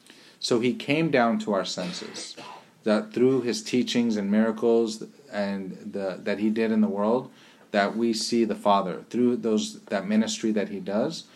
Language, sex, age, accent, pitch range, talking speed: English, male, 30-49, American, 105-120 Hz, 175 wpm